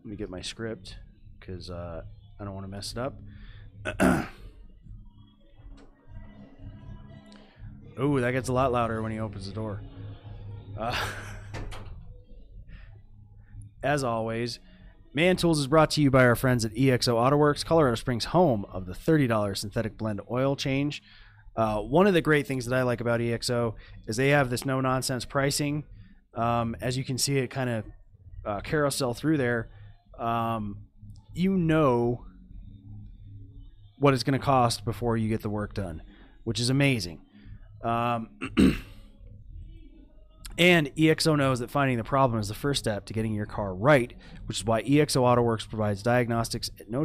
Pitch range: 100-135 Hz